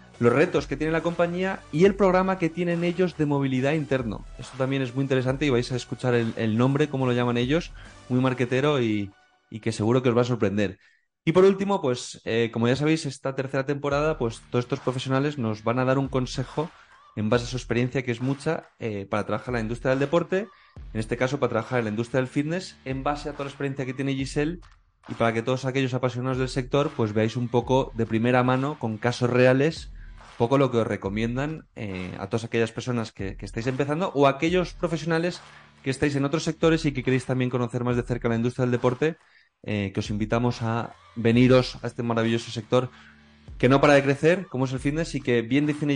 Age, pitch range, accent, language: 20-39, 115-150 Hz, Spanish, Spanish